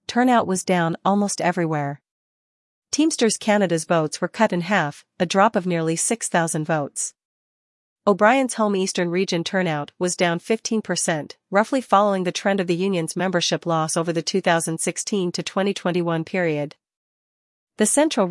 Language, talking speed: English, 140 wpm